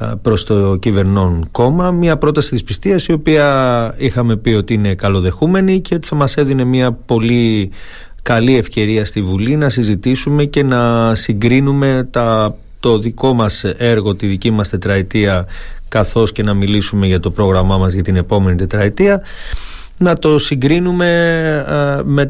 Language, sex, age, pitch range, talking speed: Greek, male, 30-49, 100-140 Hz, 150 wpm